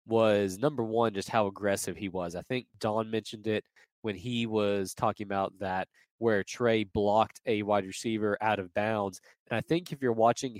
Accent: American